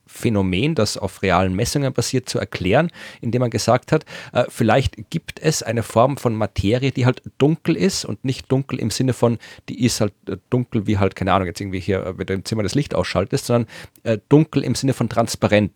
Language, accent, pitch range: German, German, 100-125 Hz